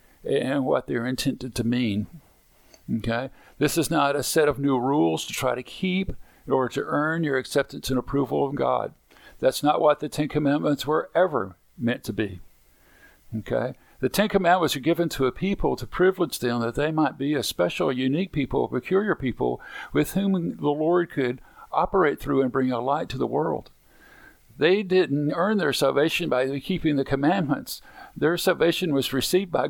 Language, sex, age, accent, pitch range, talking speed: English, male, 50-69, American, 125-170 Hz, 185 wpm